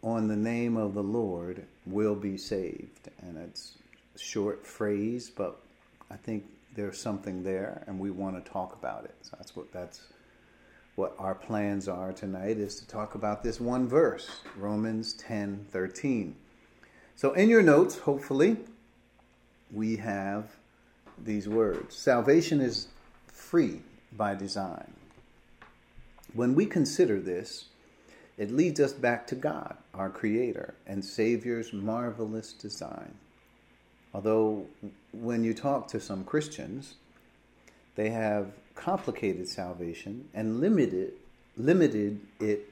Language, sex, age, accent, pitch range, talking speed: English, male, 50-69, American, 95-120 Hz, 125 wpm